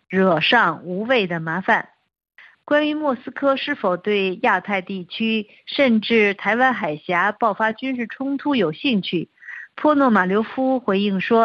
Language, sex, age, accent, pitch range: Chinese, female, 50-69, native, 205-260 Hz